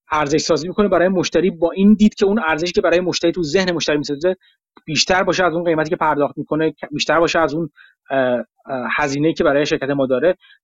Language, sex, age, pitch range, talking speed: Persian, male, 30-49, 150-195 Hz, 205 wpm